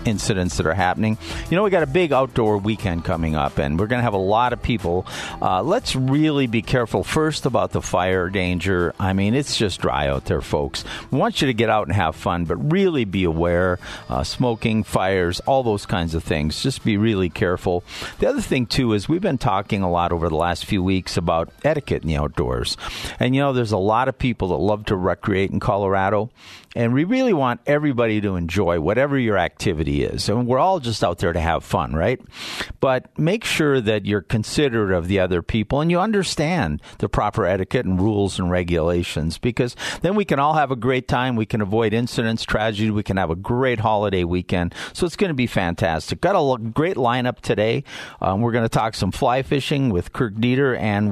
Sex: male